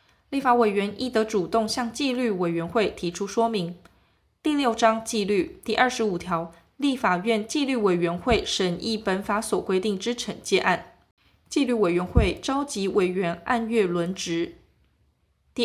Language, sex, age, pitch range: Chinese, female, 20-39, 180-240 Hz